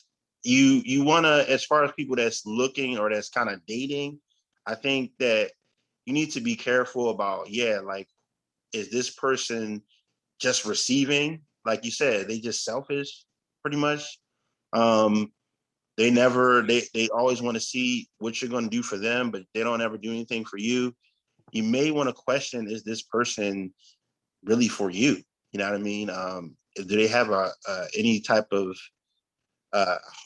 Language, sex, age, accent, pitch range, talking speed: English, male, 20-39, American, 110-140 Hz, 175 wpm